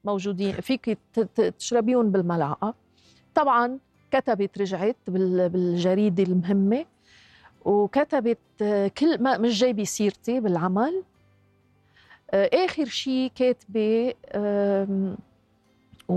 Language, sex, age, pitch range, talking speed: Arabic, female, 40-59, 190-250 Hz, 70 wpm